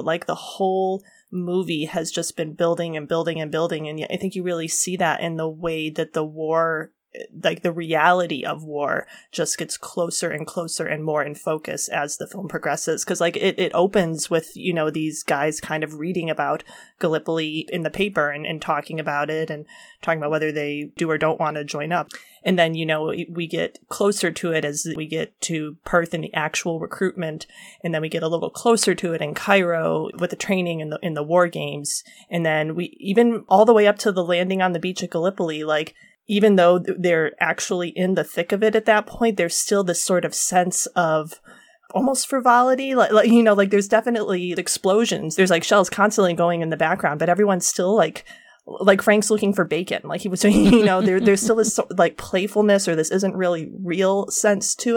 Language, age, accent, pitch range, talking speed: English, 30-49, American, 160-195 Hz, 215 wpm